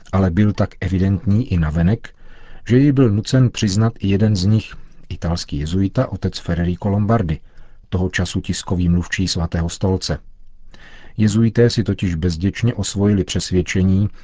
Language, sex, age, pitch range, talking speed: Czech, male, 40-59, 85-105 Hz, 135 wpm